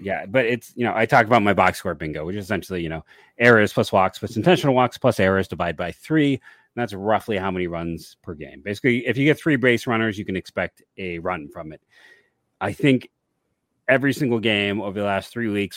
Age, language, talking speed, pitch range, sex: 30-49, English, 230 wpm, 100-150 Hz, male